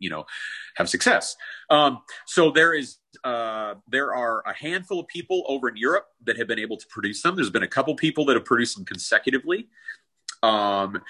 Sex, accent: male, American